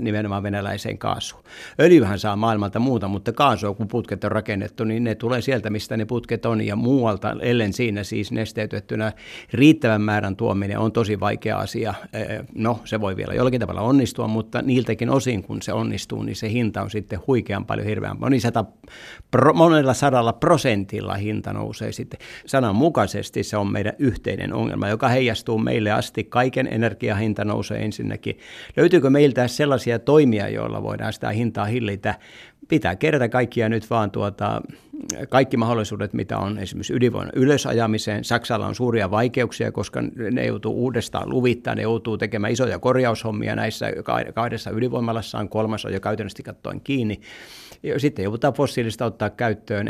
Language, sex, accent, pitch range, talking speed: Finnish, male, native, 105-125 Hz, 155 wpm